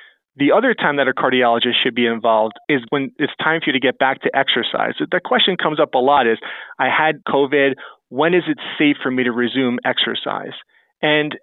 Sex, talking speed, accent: male, 210 wpm, American